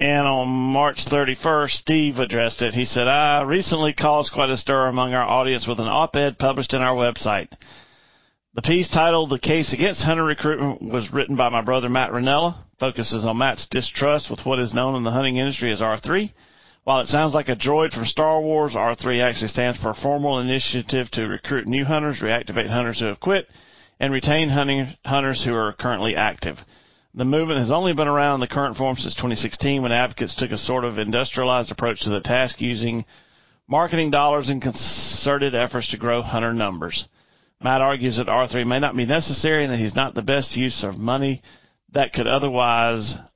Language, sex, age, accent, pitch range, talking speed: English, male, 40-59, American, 120-145 Hz, 195 wpm